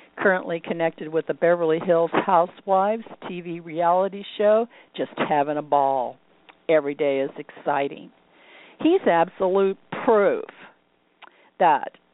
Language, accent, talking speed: English, American, 110 wpm